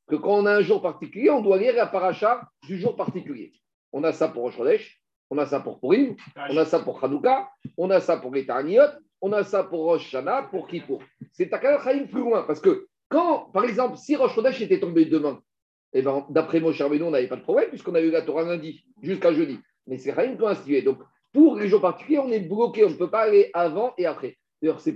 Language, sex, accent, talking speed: French, male, French, 240 wpm